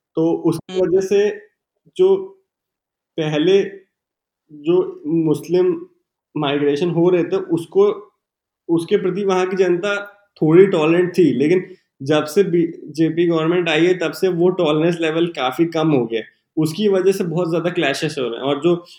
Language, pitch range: Hindi, 160-205 Hz